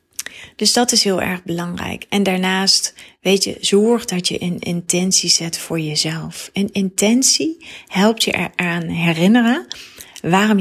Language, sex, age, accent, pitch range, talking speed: Dutch, female, 30-49, Dutch, 170-205 Hz, 140 wpm